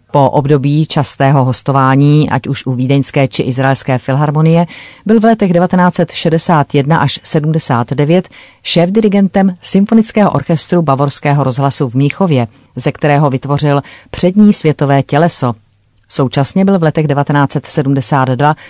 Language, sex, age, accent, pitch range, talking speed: Czech, female, 40-59, native, 135-170 Hz, 110 wpm